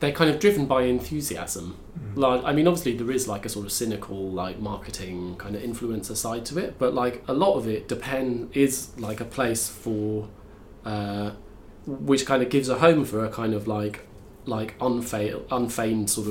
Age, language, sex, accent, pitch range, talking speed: 20-39, English, male, British, 100-125 Hz, 195 wpm